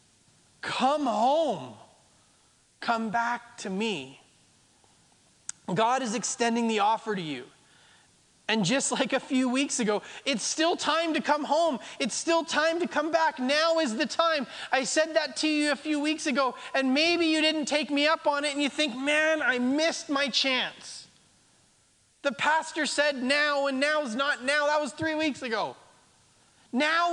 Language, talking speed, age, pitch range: English, 170 wpm, 30-49, 255-310 Hz